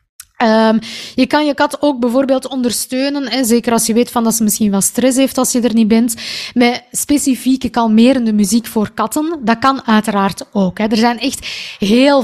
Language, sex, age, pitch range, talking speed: Dutch, female, 20-39, 215-270 Hz, 175 wpm